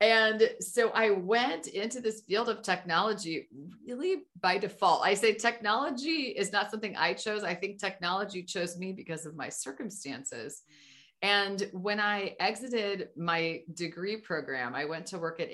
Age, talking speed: 30-49, 160 wpm